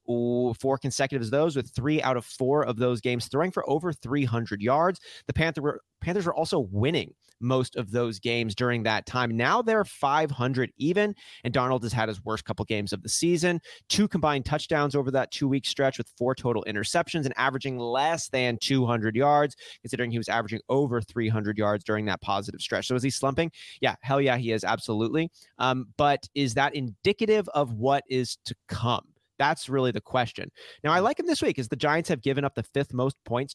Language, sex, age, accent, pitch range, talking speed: English, male, 30-49, American, 120-150 Hz, 200 wpm